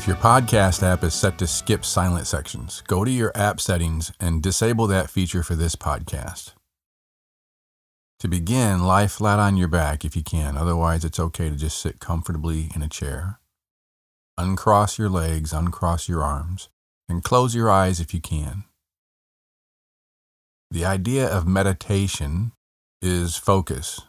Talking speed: 150 wpm